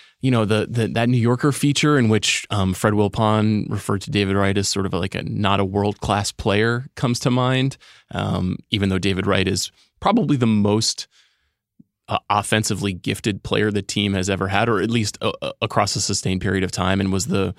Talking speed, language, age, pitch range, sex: 210 wpm, English, 20-39, 100-125 Hz, male